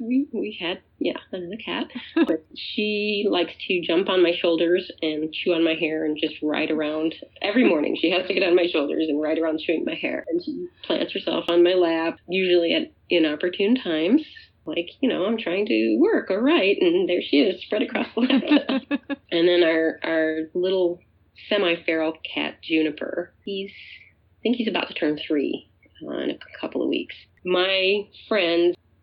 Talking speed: 185 wpm